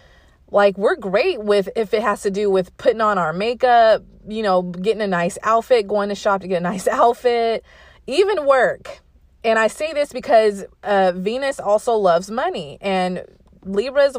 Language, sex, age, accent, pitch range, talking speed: English, female, 30-49, American, 180-225 Hz, 180 wpm